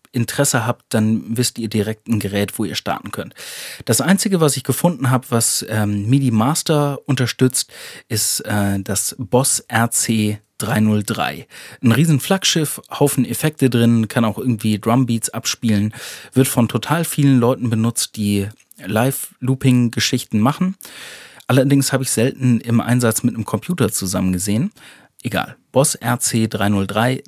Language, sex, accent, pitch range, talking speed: German, male, German, 110-135 Hz, 140 wpm